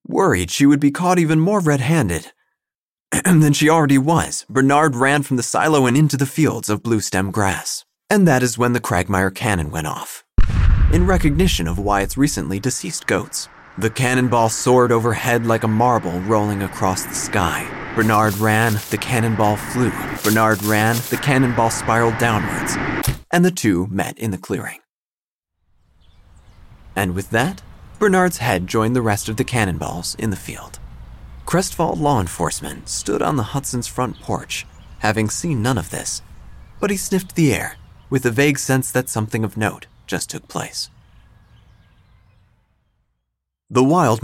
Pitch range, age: 100-135 Hz, 30-49